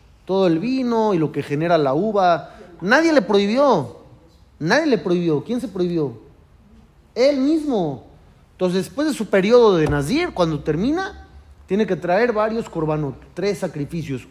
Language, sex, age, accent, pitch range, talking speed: Spanish, male, 40-59, Mexican, 155-250 Hz, 150 wpm